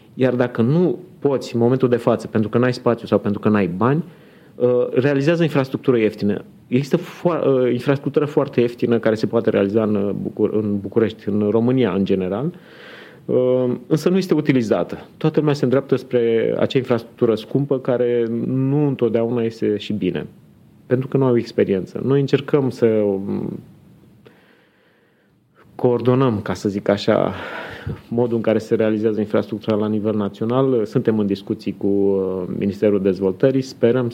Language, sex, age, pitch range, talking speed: Romanian, male, 30-49, 105-130 Hz, 140 wpm